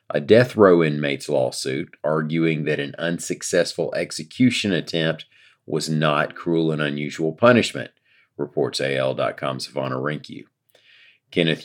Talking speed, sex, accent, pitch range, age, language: 115 wpm, male, American, 75-100 Hz, 40-59, English